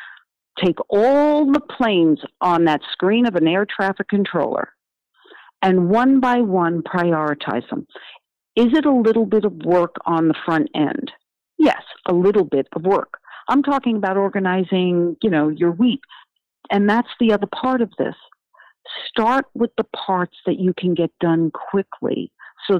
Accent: American